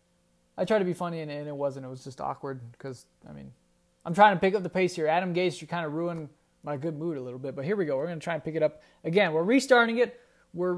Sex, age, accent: male, 20-39, American